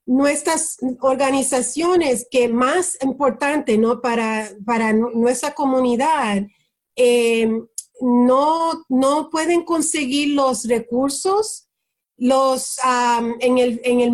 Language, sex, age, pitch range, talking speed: English, female, 40-59, 235-275 Hz, 100 wpm